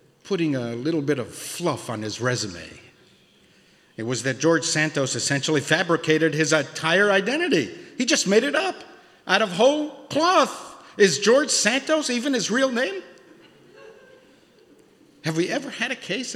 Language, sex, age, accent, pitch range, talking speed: English, male, 50-69, American, 175-285 Hz, 150 wpm